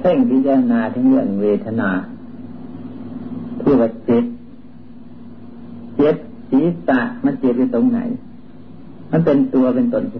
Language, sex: Thai, male